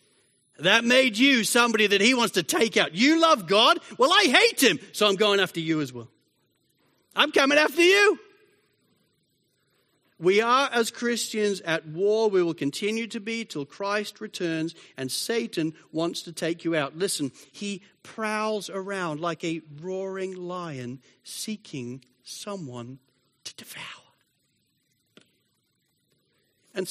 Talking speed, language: 140 wpm, English